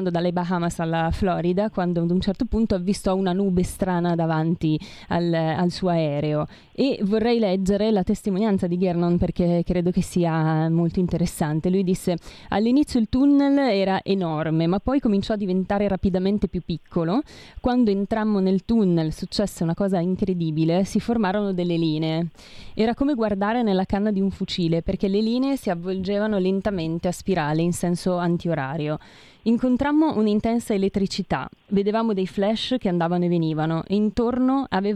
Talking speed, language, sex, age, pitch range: 155 wpm, Italian, female, 20-39, 170-215 Hz